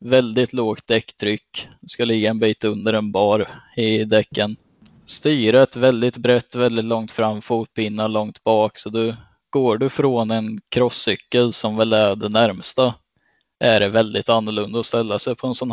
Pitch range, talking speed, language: 110-125 Hz, 170 wpm, Swedish